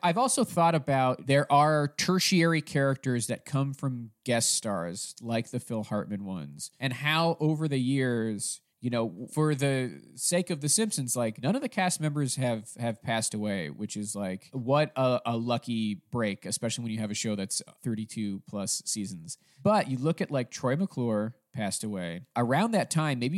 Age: 20-39